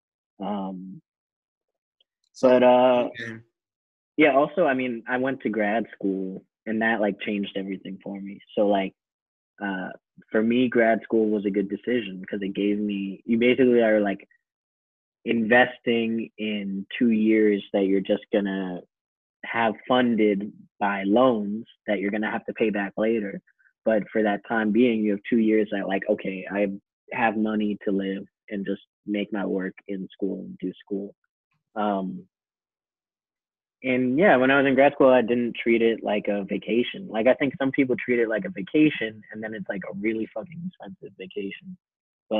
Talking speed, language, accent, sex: 170 wpm, English, American, male